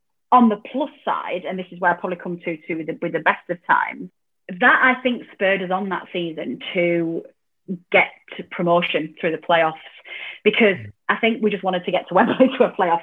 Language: English